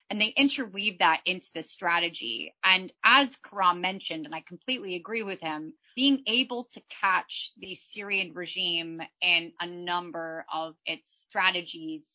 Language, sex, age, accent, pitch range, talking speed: English, female, 30-49, American, 170-225 Hz, 150 wpm